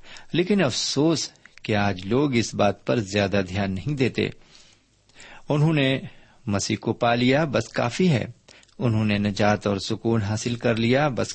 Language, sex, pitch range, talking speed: Urdu, male, 105-135 Hz, 160 wpm